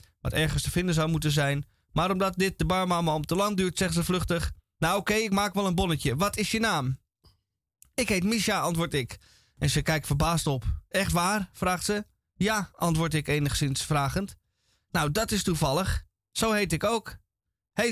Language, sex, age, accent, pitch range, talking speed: Dutch, male, 20-39, Dutch, 125-190 Hz, 195 wpm